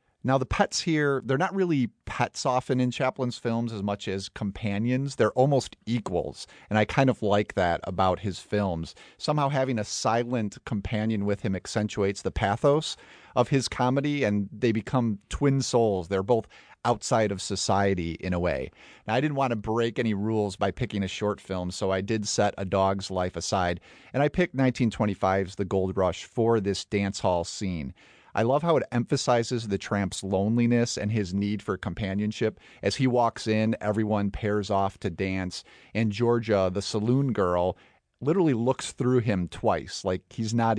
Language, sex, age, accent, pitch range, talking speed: English, male, 40-59, American, 95-125 Hz, 180 wpm